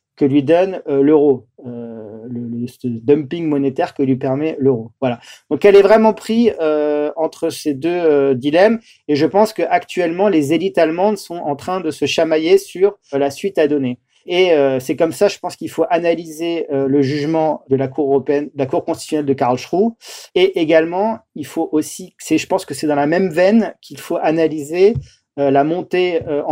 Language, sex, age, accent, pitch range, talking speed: French, male, 40-59, French, 140-175 Hz, 205 wpm